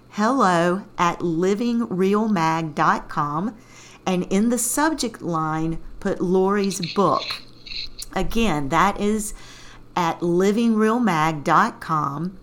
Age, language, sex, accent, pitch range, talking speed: 40-59, English, female, American, 165-210 Hz, 75 wpm